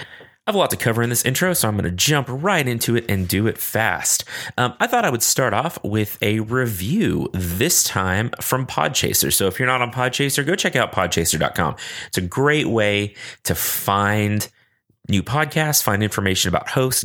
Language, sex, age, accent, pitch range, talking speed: English, male, 30-49, American, 90-125 Hz, 195 wpm